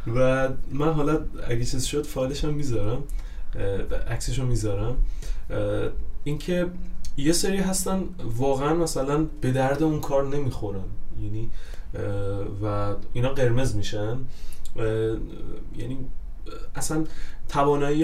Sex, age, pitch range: male, 20-39, 110-150 Hz